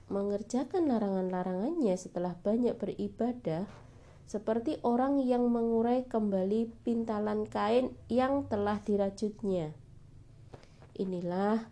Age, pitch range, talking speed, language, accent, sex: 30-49, 185-230 Hz, 80 wpm, Indonesian, native, female